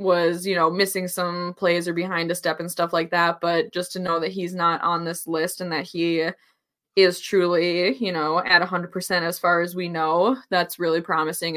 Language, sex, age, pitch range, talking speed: English, female, 20-39, 170-190 Hz, 215 wpm